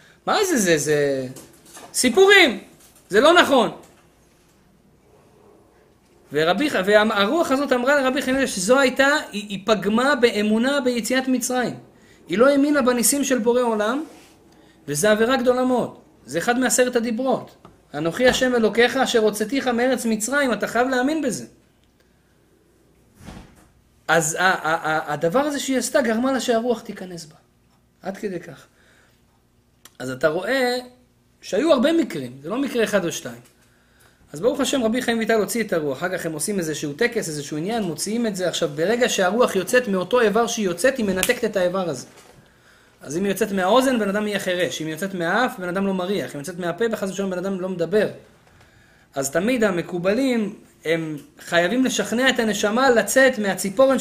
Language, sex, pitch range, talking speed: Hebrew, male, 175-250 Hz, 165 wpm